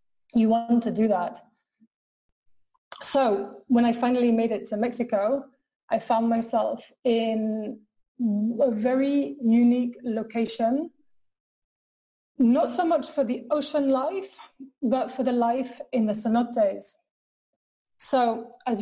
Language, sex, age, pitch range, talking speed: English, female, 20-39, 220-255 Hz, 120 wpm